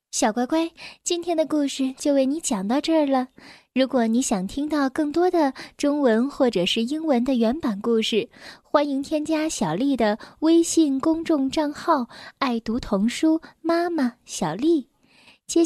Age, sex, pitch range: 10-29, female, 225-315 Hz